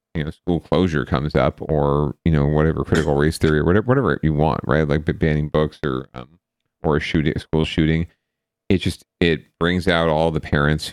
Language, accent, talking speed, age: English, American, 210 wpm, 40-59